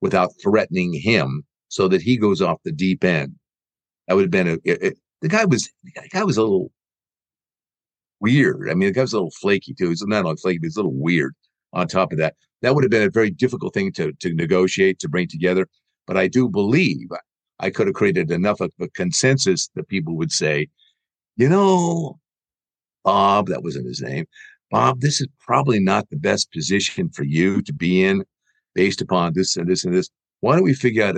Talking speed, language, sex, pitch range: 210 wpm, English, male, 90-130 Hz